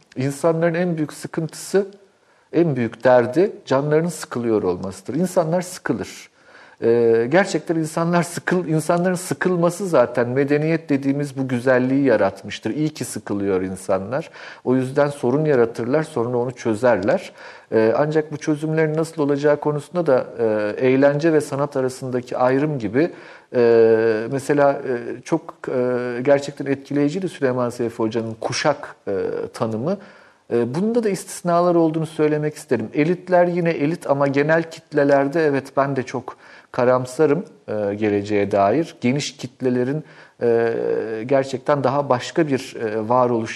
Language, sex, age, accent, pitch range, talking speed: Turkish, male, 50-69, native, 120-160 Hz, 125 wpm